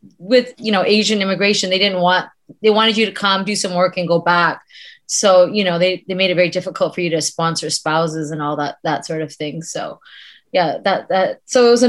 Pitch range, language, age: 170-200 Hz, English, 20-39